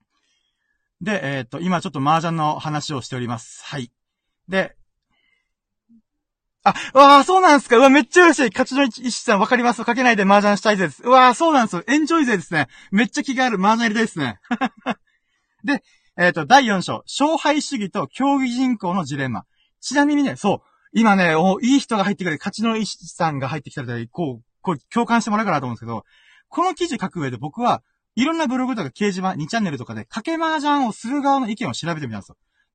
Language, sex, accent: Japanese, male, native